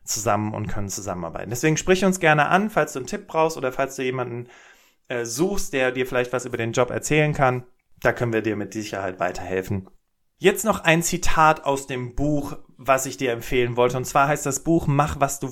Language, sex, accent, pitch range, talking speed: German, male, German, 120-150 Hz, 215 wpm